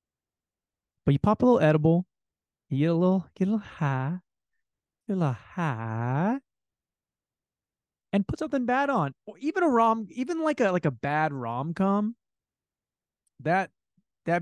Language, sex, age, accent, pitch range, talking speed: English, male, 30-49, American, 125-175 Hz, 150 wpm